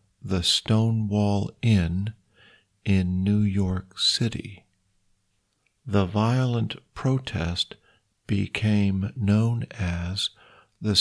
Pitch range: 100-115 Hz